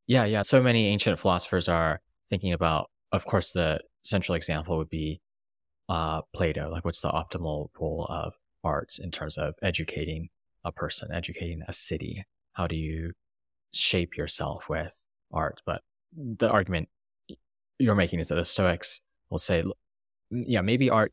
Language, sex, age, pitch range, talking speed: English, male, 20-39, 80-95 Hz, 155 wpm